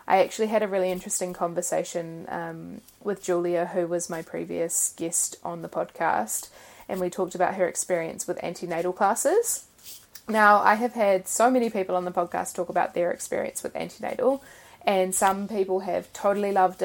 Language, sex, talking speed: English, female, 175 wpm